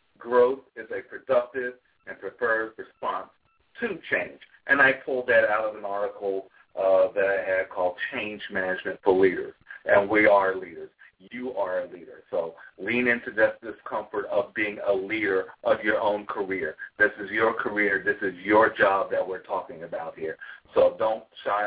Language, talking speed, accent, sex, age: English, 175 wpm, American, male, 50-69